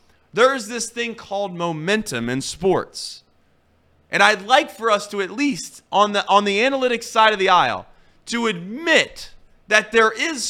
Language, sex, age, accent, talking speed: English, male, 30-49, American, 165 wpm